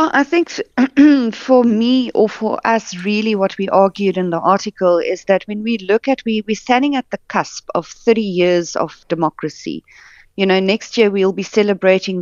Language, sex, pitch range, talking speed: English, female, 180-220 Hz, 185 wpm